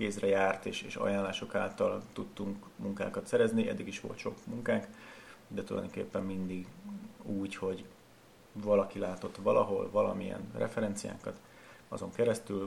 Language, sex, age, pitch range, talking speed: Hungarian, male, 30-49, 95-110 Hz, 125 wpm